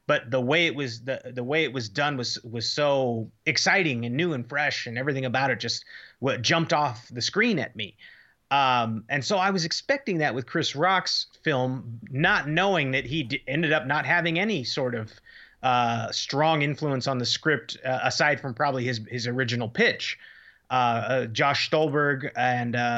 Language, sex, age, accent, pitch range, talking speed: English, male, 30-49, American, 125-160 Hz, 190 wpm